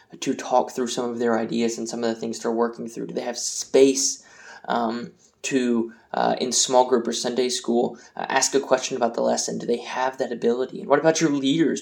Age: 20-39